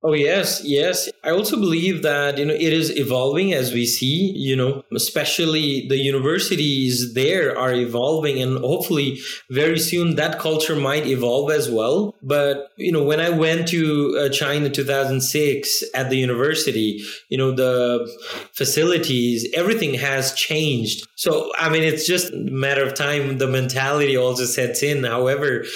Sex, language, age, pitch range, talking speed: male, English, 20-39, 130-155 Hz, 160 wpm